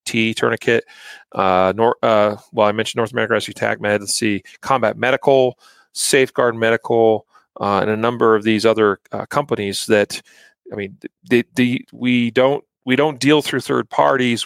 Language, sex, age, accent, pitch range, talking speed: English, male, 40-59, American, 105-125 Hz, 170 wpm